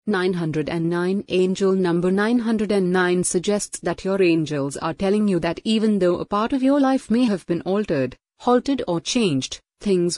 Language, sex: Hindi, female